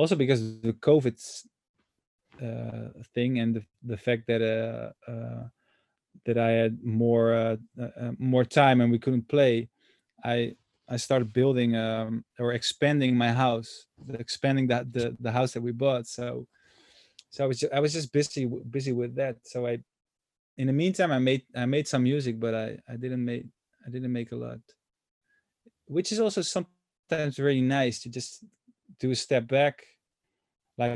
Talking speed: 175 wpm